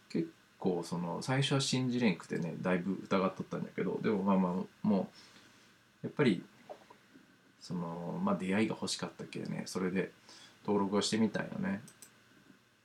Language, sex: Japanese, male